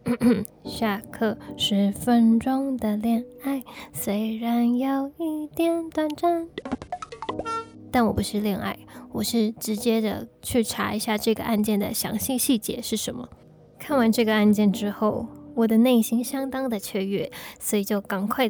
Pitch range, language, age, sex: 210-255 Hz, Chinese, 20-39, female